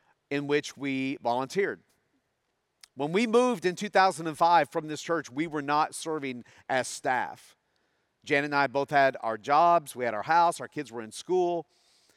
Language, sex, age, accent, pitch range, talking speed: English, male, 40-59, American, 130-165 Hz, 170 wpm